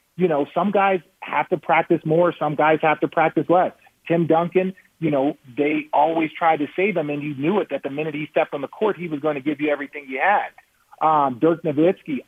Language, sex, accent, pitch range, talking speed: English, male, American, 140-175 Hz, 235 wpm